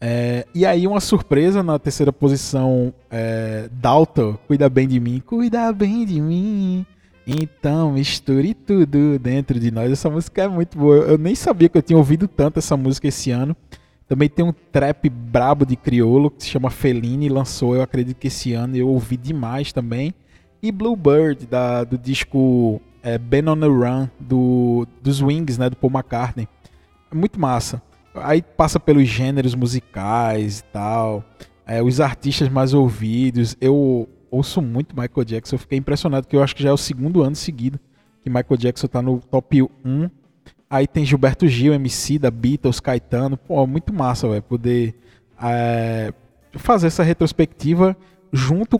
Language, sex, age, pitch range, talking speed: Portuguese, male, 20-39, 125-155 Hz, 170 wpm